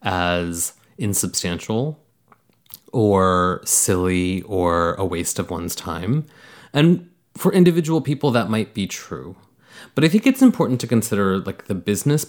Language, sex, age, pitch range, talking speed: English, male, 30-49, 95-135 Hz, 135 wpm